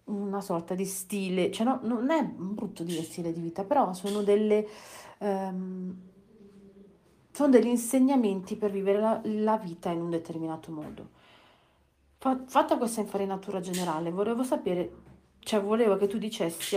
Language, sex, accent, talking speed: Italian, female, native, 145 wpm